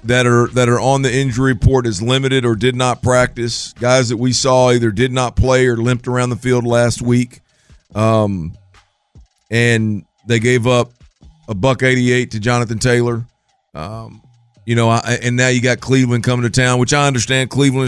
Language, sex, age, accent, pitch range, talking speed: English, male, 40-59, American, 110-125 Hz, 190 wpm